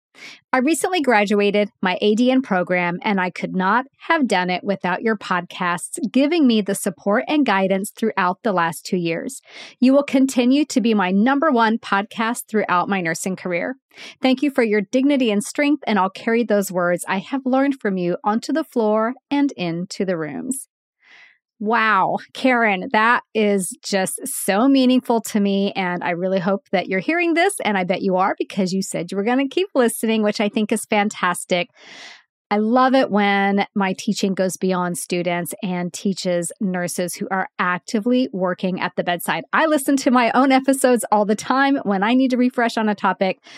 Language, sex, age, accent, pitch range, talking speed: English, female, 30-49, American, 190-255 Hz, 185 wpm